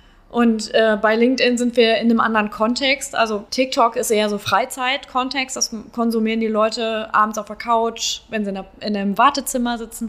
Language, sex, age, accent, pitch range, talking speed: German, female, 20-39, German, 215-250 Hz, 185 wpm